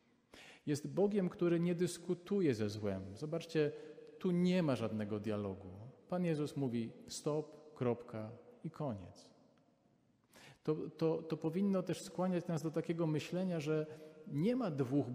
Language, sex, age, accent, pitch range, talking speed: Polish, male, 40-59, native, 120-170 Hz, 130 wpm